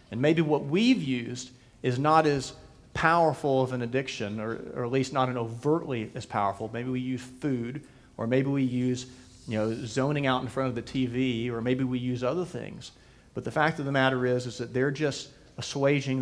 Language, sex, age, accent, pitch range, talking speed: English, male, 40-59, American, 115-140 Hz, 205 wpm